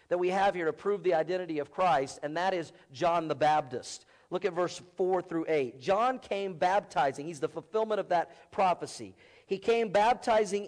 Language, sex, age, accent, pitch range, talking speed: English, male, 50-69, American, 170-220 Hz, 190 wpm